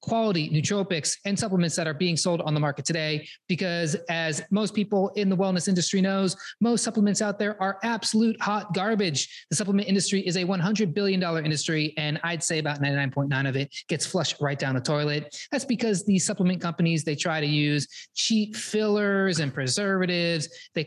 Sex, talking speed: male, 185 wpm